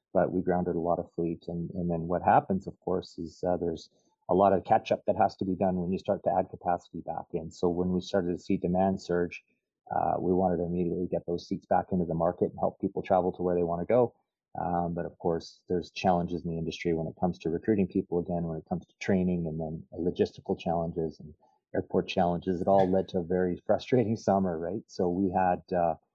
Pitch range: 80-95 Hz